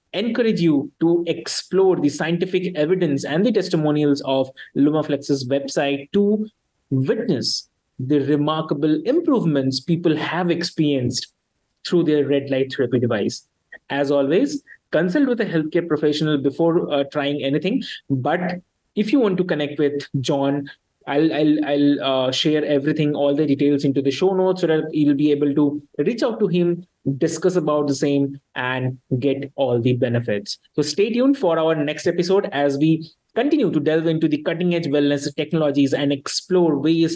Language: English